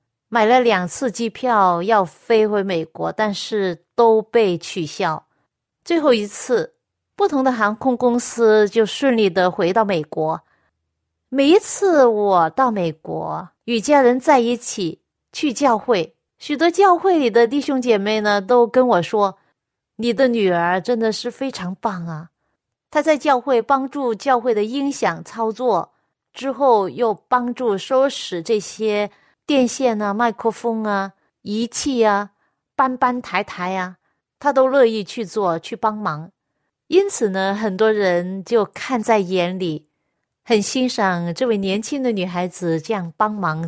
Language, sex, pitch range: Chinese, female, 180-250 Hz